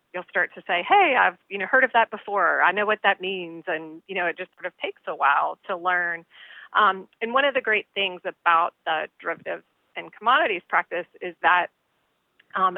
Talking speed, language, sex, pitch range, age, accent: 210 wpm, English, female, 175-205 Hz, 30-49, American